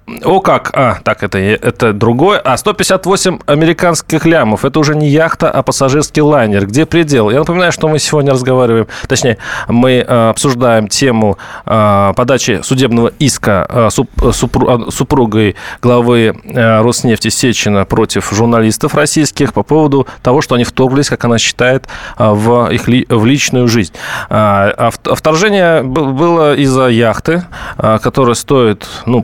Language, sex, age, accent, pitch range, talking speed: Russian, male, 20-39, native, 115-145 Hz, 130 wpm